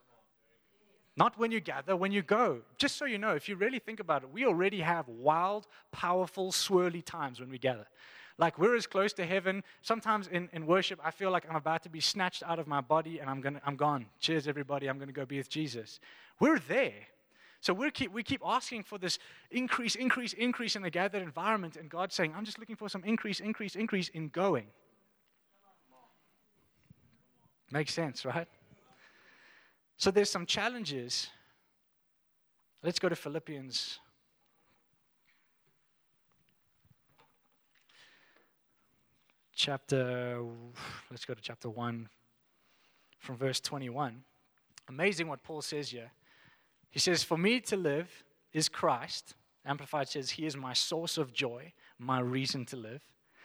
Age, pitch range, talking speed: 20-39, 140-195 Hz, 155 wpm